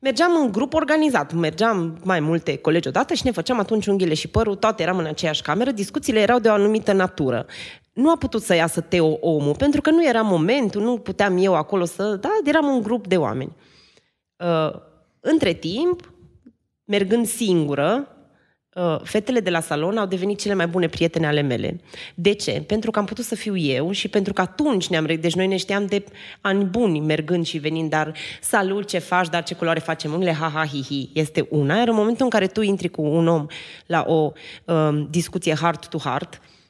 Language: Romanian